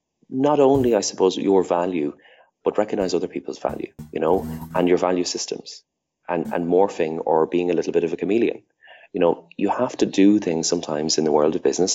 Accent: Irish